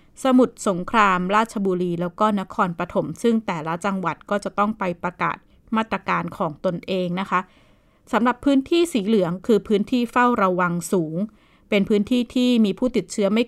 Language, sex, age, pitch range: Thai, female, 20-39, 185-225 Hz